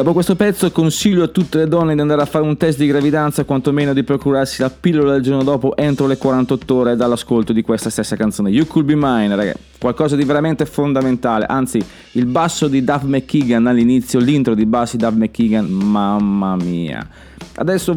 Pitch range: 115-155 Hz